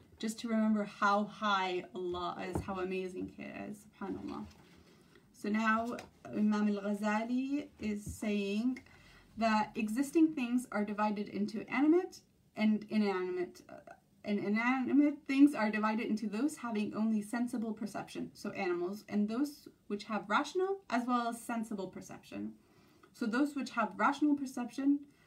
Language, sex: English, female